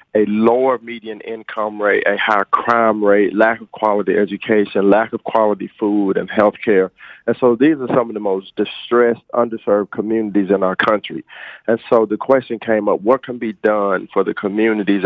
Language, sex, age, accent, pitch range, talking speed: English, male, 40-59, American, 105-120 Hz, 185 wpm